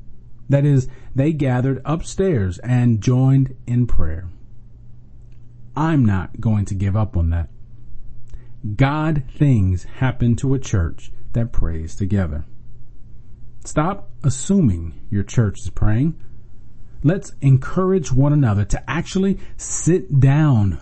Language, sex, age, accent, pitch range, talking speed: English, male, 40-59, American, 105-130 Hz, 115 wpm